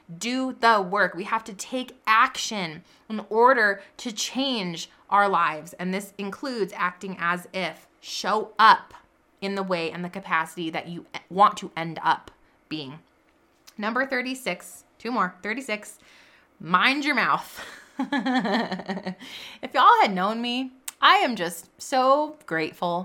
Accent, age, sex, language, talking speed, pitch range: American, 20-39, female, English, 140 wpm, 180-255 Hz